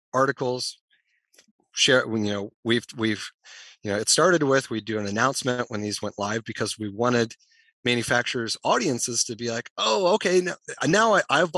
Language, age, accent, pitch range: English, 30-49, American, 115-145 Hz